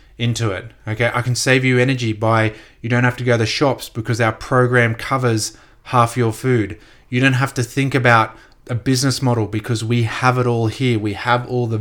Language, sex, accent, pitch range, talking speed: English, male, Australian, 110-130 Hz, 220 wpm